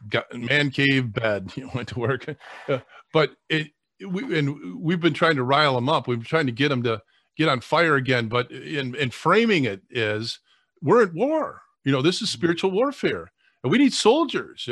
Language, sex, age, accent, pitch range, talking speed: English, male, 40-59, American, 135-190 Hz, 205 wpm